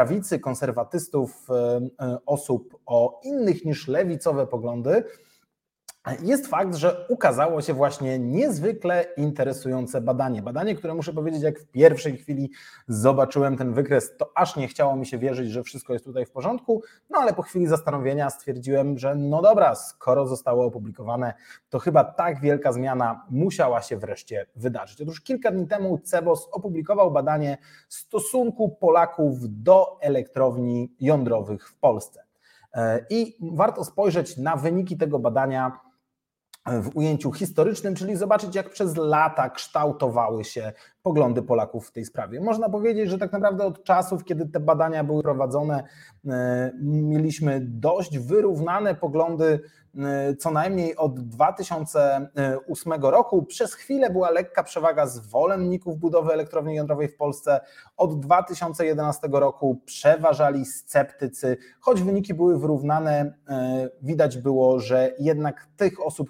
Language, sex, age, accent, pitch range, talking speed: Polish, male, 30-49, native, 130-175 Hz, 130 wpm